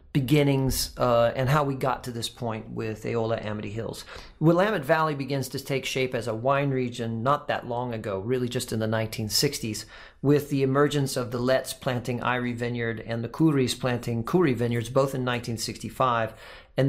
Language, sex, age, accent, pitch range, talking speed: English, male, 40-59, American, 120-140 Hz, 180 wpm